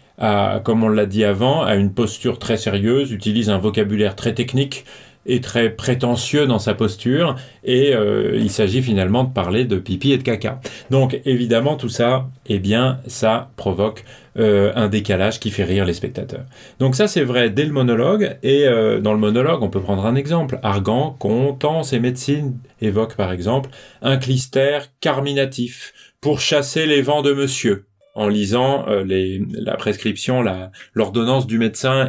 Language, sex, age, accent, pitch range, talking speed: French, male, 30-49, French, 110-135 Hz, 175 wpm